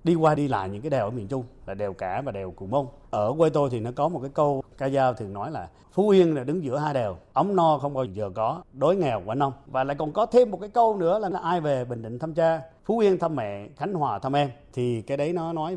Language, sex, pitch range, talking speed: Vietnamese, male, 110-155 Hz, 295 wpm